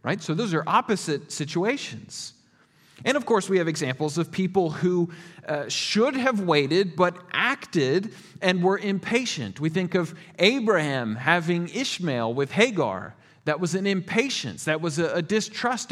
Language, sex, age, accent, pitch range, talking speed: English, male, 40-59, American, 145-190 Hz, 150 wpm